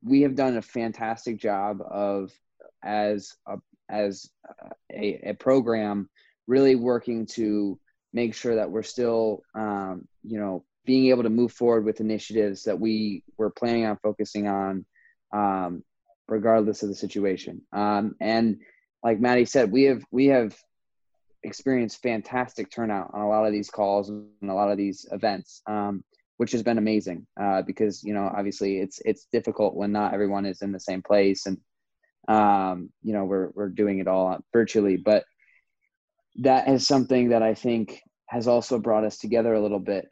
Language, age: English, 20-39